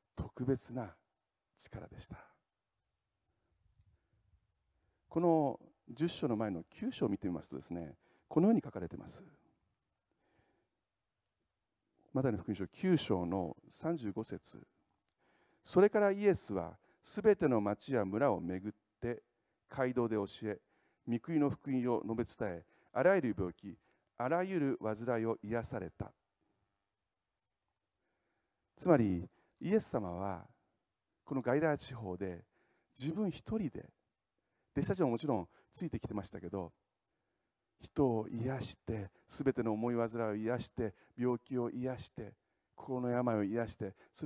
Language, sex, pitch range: Japanese, male, 100-130 Hz